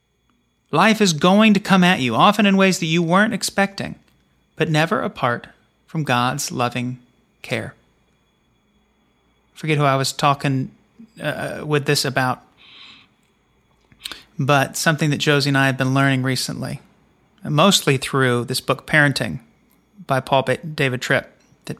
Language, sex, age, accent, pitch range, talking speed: English, male, 30-49, American, 130-180 Hz, 145 wpm